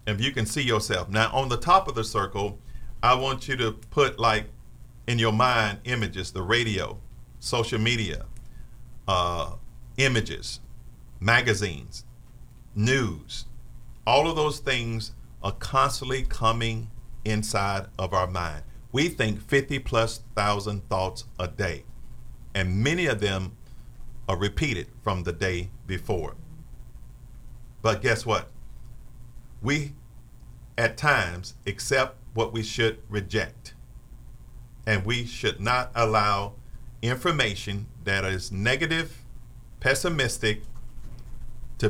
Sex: male